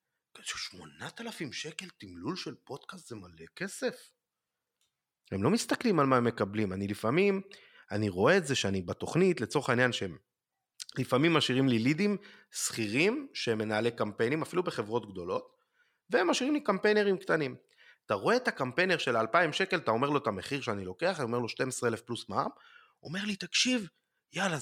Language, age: Hebrew, 30-49